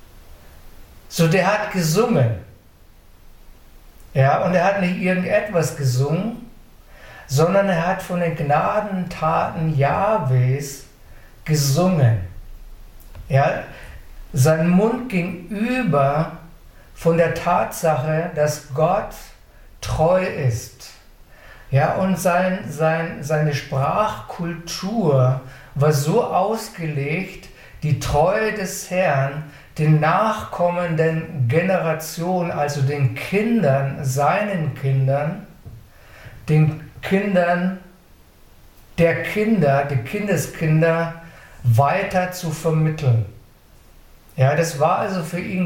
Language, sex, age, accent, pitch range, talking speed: German, male, 50-69, German, 140-180 Hz, 85 wpm